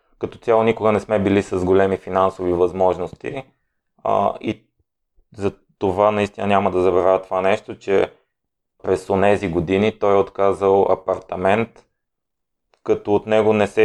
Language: Bulgarian